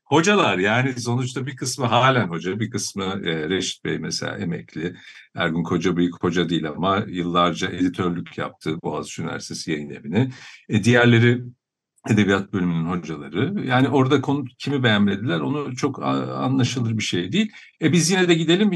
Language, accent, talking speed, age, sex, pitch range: Turkish, native, 155 wpm, 50-69, male, 95-140 Hz